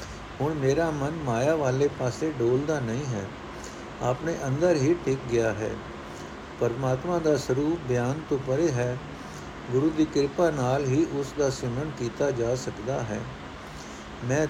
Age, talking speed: 60-79, 145 wpm